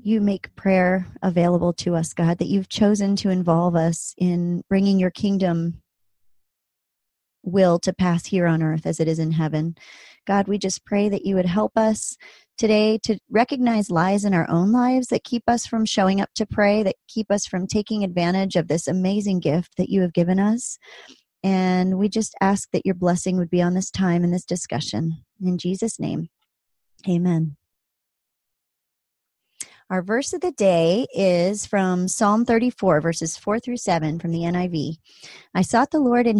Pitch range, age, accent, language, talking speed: 175-215 Hz, 30-49, American, English, 180 wpm